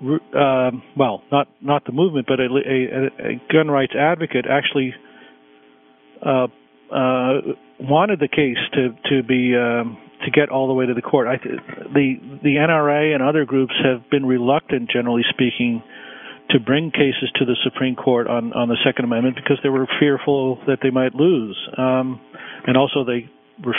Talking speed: 175 wpm